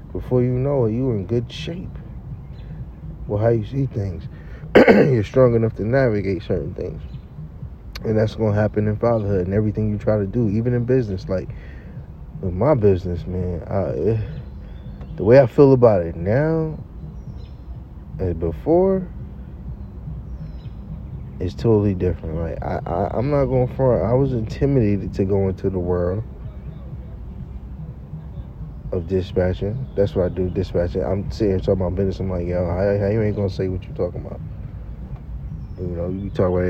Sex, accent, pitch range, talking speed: male, American, 90-110 Hz, 165 wpm